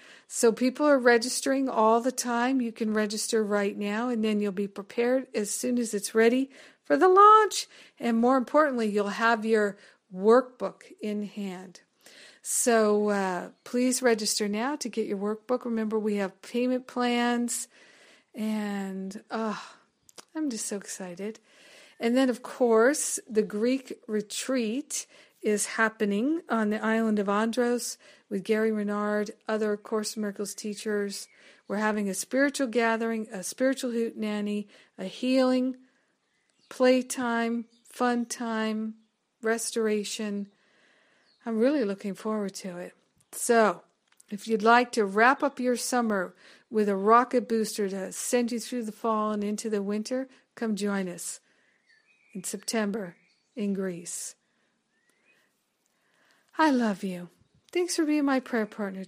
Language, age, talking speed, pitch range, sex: English, 50-69, 135 wpm, 205-250 Hz, female